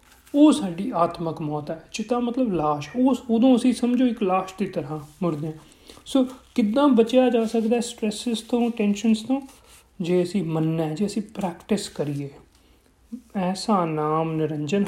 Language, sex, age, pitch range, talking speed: Punjabi, male, 40-59, 170-240 Hz, 155 wpm